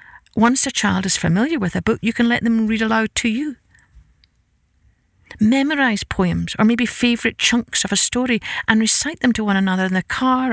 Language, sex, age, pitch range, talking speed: English, female, 50-69, 185-240 Hz, 195 wpm